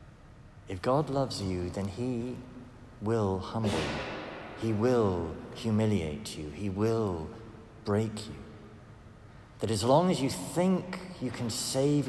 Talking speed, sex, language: 130 wpm, male, English